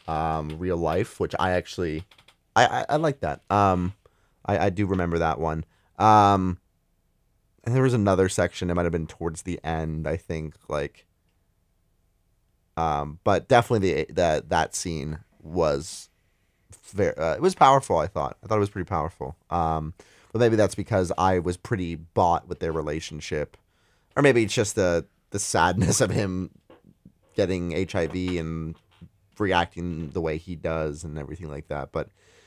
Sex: male